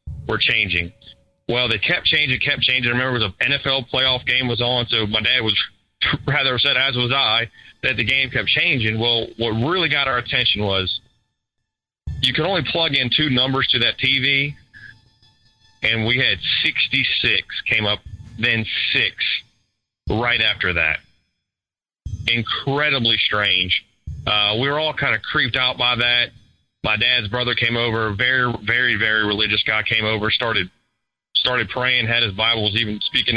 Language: English